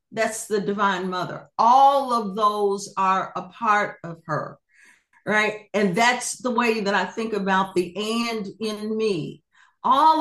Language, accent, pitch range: English, American, 200-250 Hz